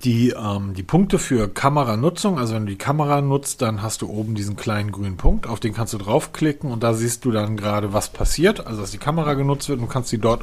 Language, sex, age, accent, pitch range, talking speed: German, male, 40-59, German, 110-140 Hz, 240 wpm